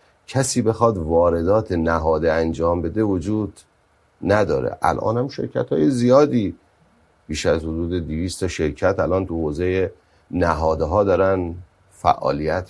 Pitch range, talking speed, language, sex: 85-115 Hz, 110 wpm, Persian, male